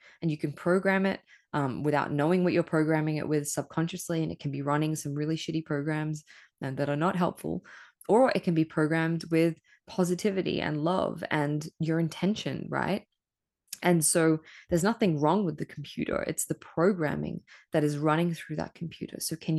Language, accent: English, Australian